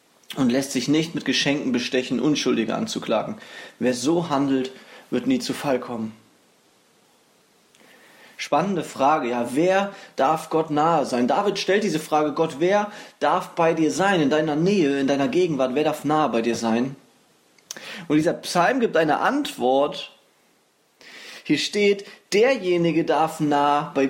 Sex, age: male, 20-39